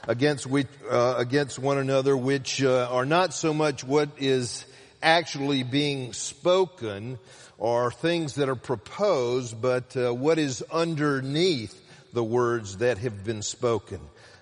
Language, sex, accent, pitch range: English, male, American, 125-155 Hz